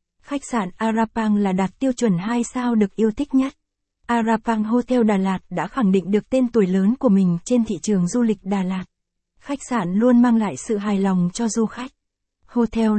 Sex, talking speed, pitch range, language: female, 210 wpm, 205-235 Hz, Vietnamese